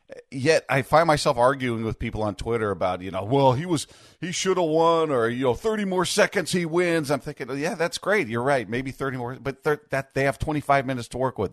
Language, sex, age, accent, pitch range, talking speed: English, male, 40-59, American, 110-140 Hz, 245 wpm